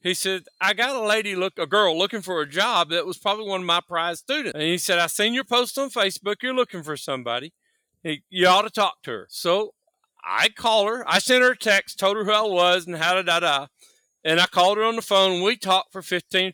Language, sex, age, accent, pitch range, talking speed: English, male, 40-59, American, 185-275 Hz, 255 wpm